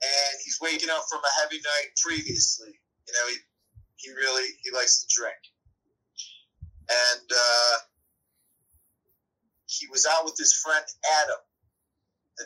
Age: 30-49